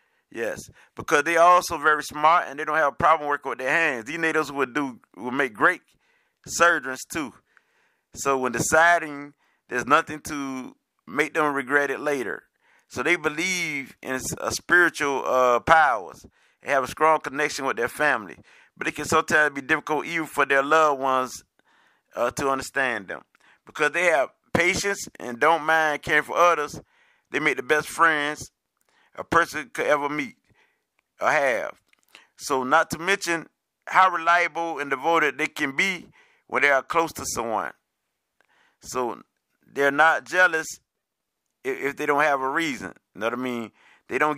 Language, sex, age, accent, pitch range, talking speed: English, male, 30-49, American, 135-165 Hz, 165 wpm